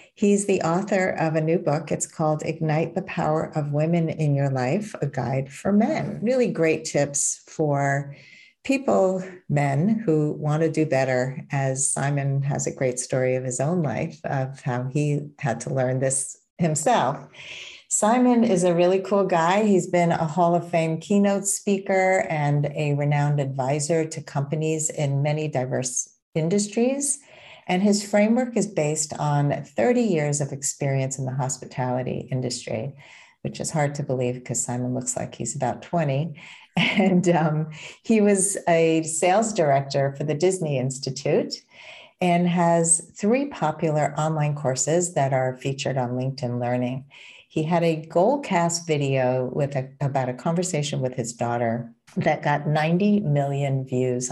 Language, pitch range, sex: English, 135-175 Hz, female